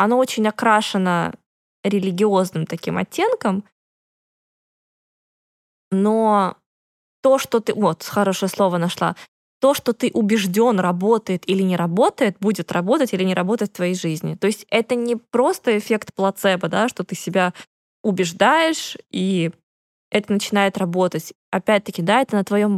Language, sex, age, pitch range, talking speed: Russian, female, 20-39, 185-230 Hz, 135 wpm